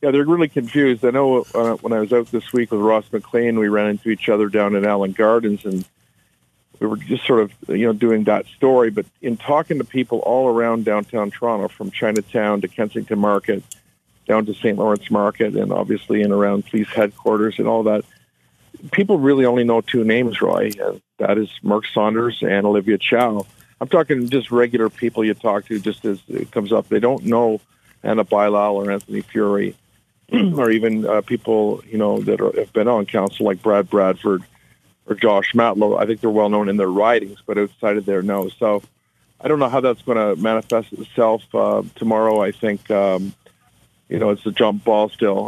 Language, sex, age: English, male, 50-69